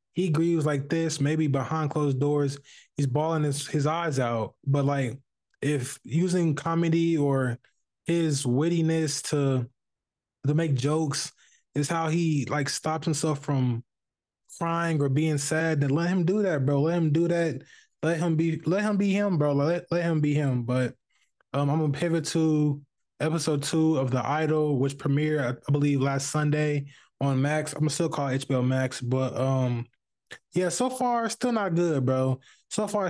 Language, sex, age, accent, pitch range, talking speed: English, male, 20-39, American, 140-165 Hz, 175 wpm